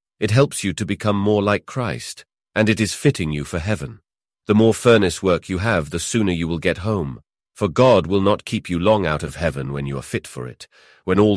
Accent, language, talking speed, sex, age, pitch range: British, English, 240 wpm, male, 40-59, 85-110 Hz